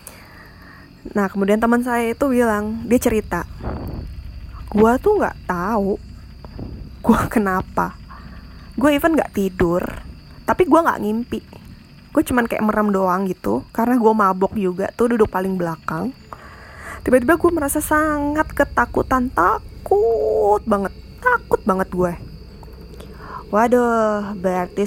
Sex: female